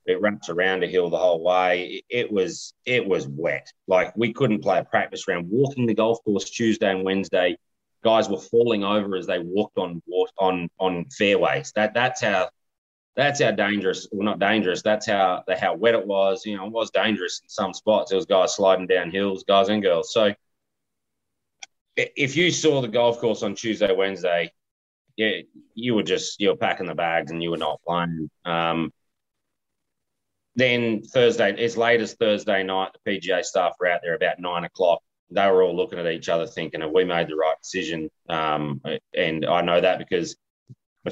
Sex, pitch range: male, 90-110 Hz